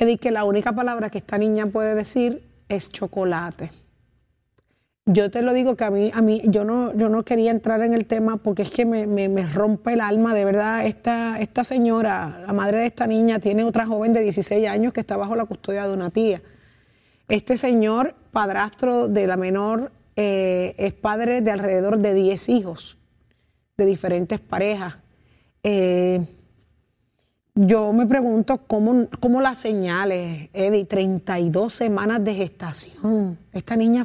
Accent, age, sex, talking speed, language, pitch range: American, 30-49, female, 160 wpm, Spanish, 195-230 Hz